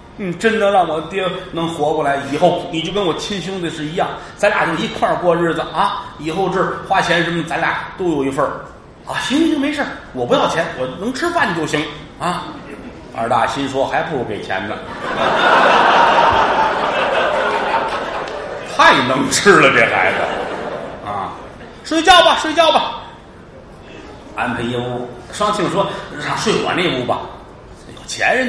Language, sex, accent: Chinese, male, native